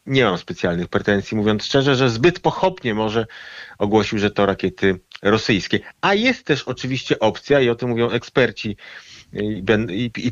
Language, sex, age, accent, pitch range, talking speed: Polish, male, 40-59, native, 110-145 Hz, 165 wpm